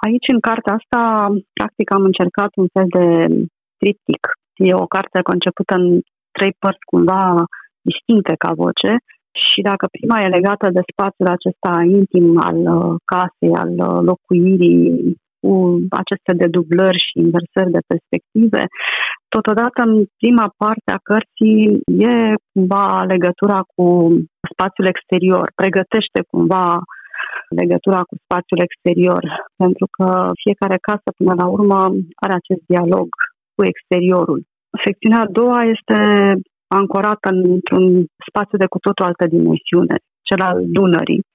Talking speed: 125 wpm